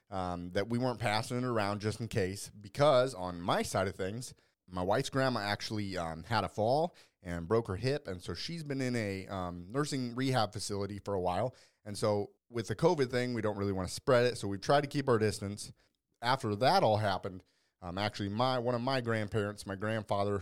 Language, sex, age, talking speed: English, male, 30-49, 215 wpm